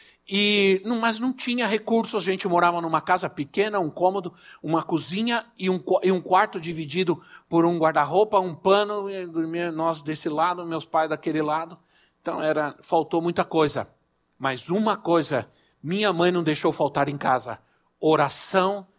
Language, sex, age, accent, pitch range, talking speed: Portuguese, male, 60-79, Brazilian, 165-205 Hz, 160 wpm